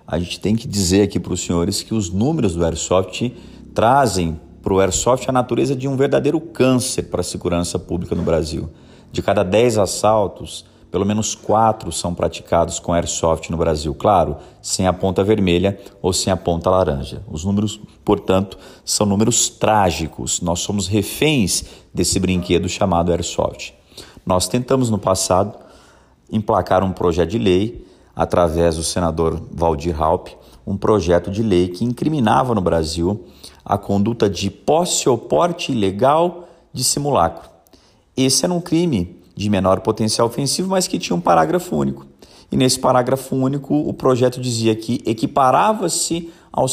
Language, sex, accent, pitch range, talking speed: Portuguese, male, Brazilian, 85-120 Hz, 155 wpm